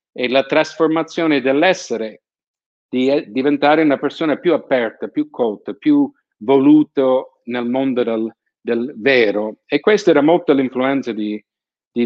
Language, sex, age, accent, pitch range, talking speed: Italian, male, 50-69, native, 125-155 Hz, 130 wpm